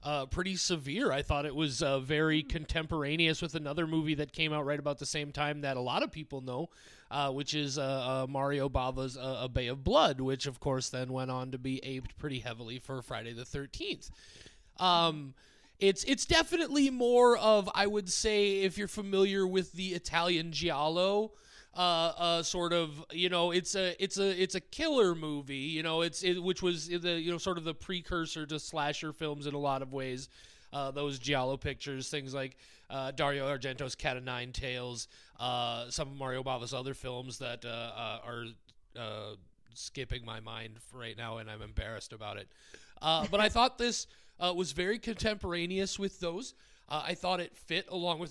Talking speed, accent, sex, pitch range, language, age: 195 wpm, American, male, 135-195 Hz, English, 30-49